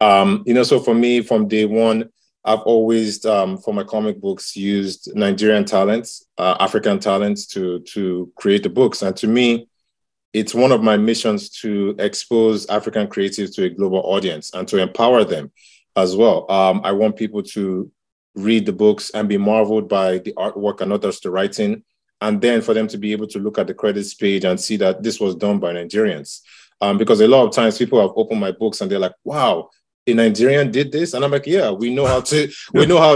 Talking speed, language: 210 wpm, English